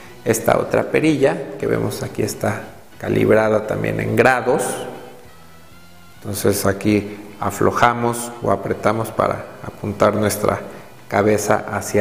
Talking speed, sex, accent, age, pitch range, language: 105 wpm, male, Mexican, 40-59, 105-125 Hz, Spanish